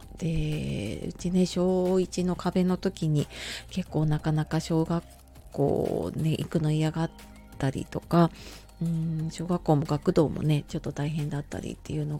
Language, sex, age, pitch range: Japanese, female, 30-49, 155-185 Hz